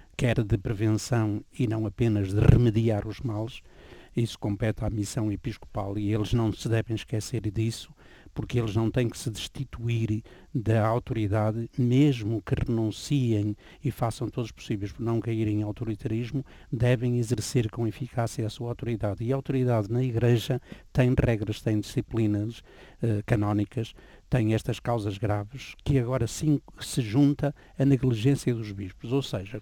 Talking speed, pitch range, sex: 155 wpm, 110-130 Hz, male